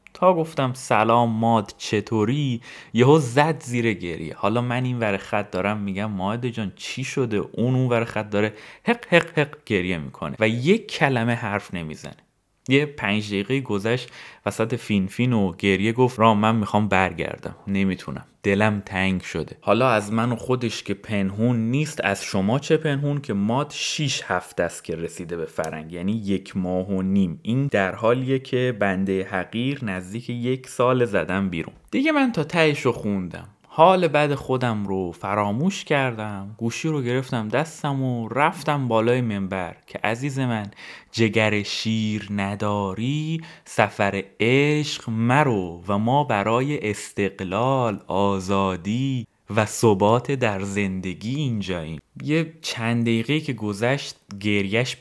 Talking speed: 145 wpm